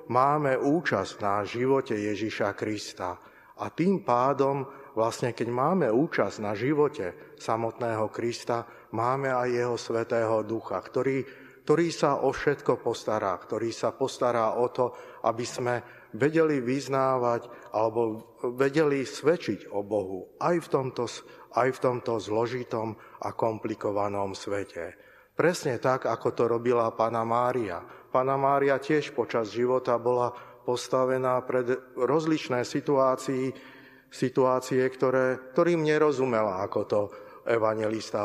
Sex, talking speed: male, 120 wpm